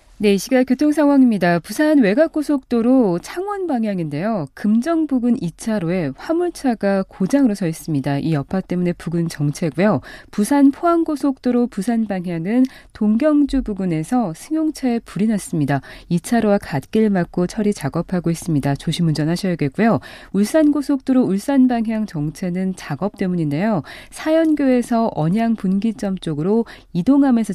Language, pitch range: Korean, 170-260 Hz